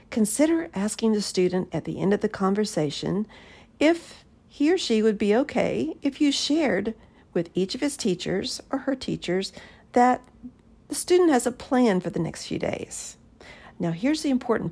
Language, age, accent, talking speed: English, 50-69, American, 175 wpm